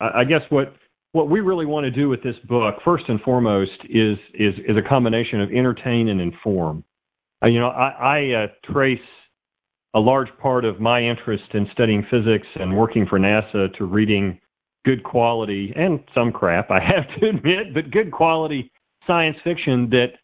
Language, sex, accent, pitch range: English, male, American, 105-130 Hz